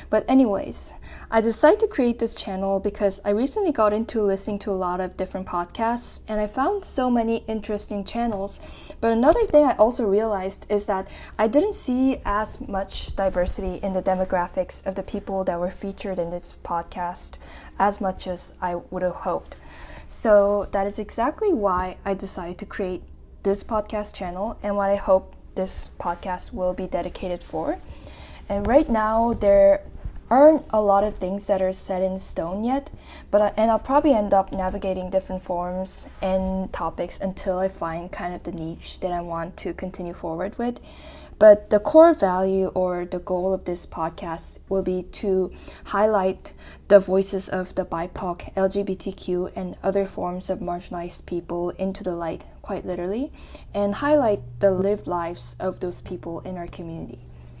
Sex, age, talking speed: female, 10-29, 170 wpm